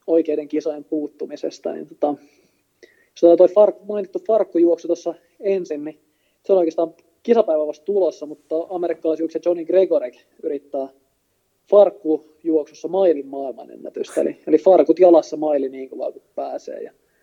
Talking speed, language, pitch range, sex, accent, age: 120 wpm, Finnish, 150-185 Hz, male, native, 20-39